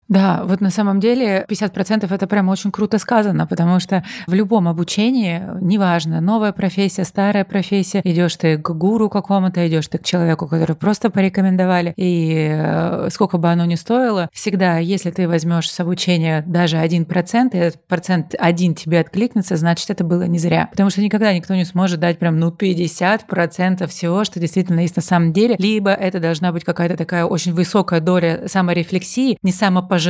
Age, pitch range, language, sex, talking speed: 30-49, 170-200 Hz, Russian, female, 175 wpm